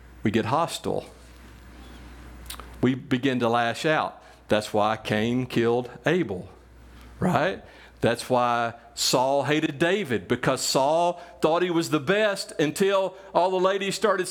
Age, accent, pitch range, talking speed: 50-69, American, 125-200 Hz, 130 wpm